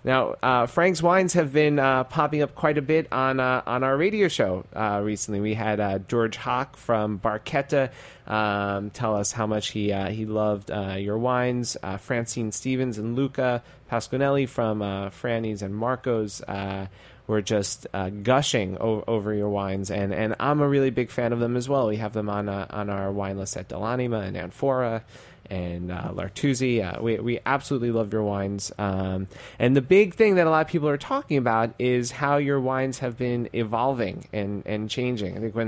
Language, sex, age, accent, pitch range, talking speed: English, male, 30-49, American, 105-130 Hz, 200 wpm